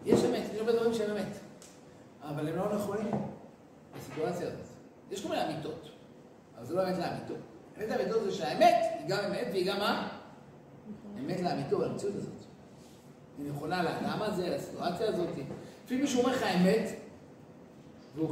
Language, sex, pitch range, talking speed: Hebrew, male, 170-230 Hz, 155 wpm